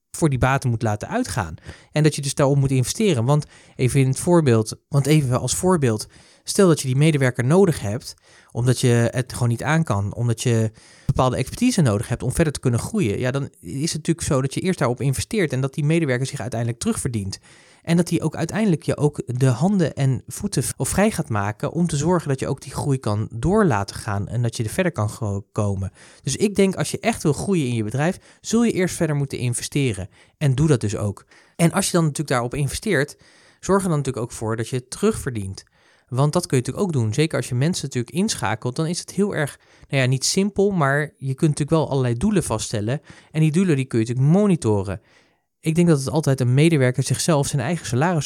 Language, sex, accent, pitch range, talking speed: Dutch, male, Dutch, 120-165 Hz, 225 wpm